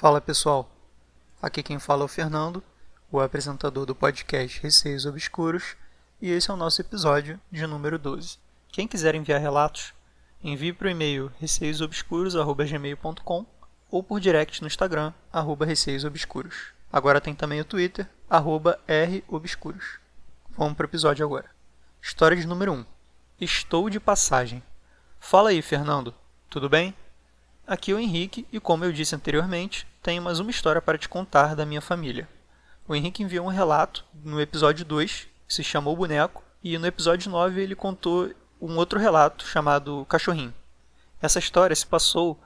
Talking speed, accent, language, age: 155 wpm, Brazilian, Portuguese, 20-39